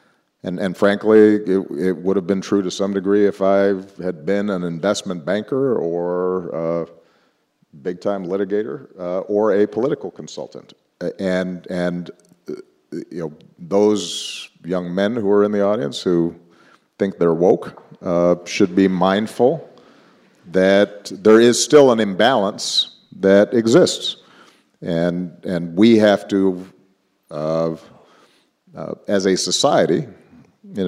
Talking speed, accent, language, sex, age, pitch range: 130 wpm, American, English, male, 50-69, 85-105 Hz